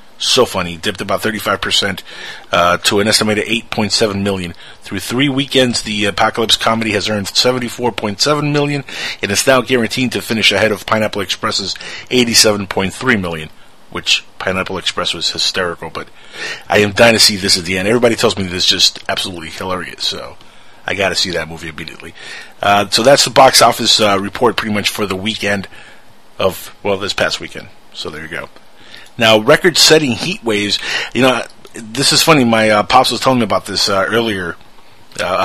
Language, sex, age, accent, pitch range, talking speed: English, male, 30-49, American, 100-120 Hz, 180 wpm